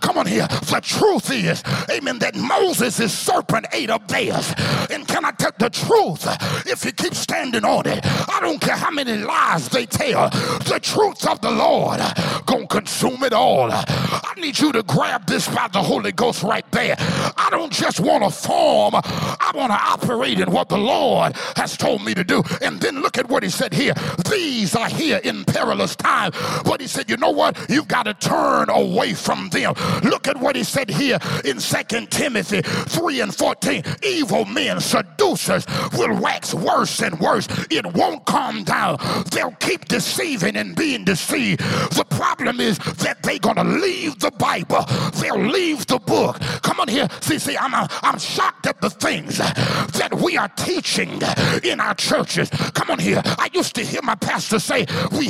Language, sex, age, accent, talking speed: English, male, 50-69, American, 190 wpm